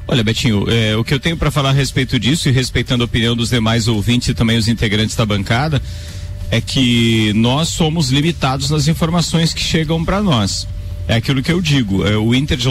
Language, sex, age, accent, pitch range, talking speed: Portuguese, male, 40-59, Brazilian, 110-160 Hz, 210 wpm